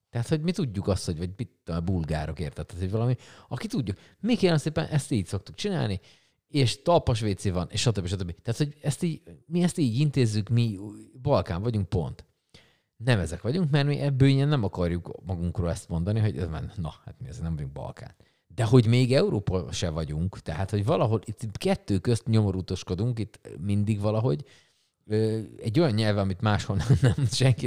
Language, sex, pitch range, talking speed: Hungarian, male, 95-125 Hz, 180 wpm